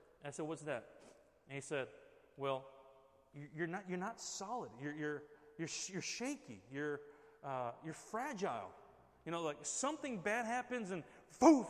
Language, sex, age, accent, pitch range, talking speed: English, male, 30-49, American, 130-205 Hz, 155 wpm